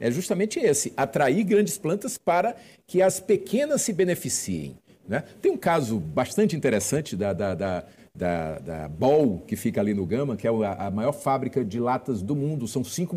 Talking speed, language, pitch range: 170 wpm, Portuguese, 115-190 Hz